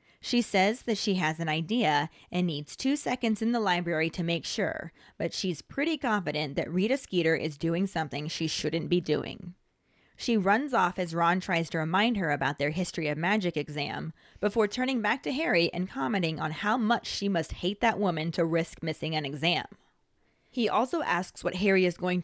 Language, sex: English, female